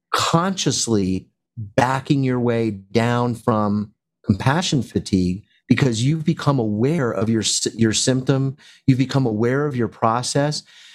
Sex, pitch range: male, 100-130 Hz